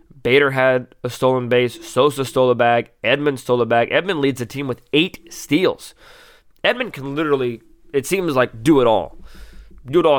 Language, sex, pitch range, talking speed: English, male, 115-145 Hz, 190 wpm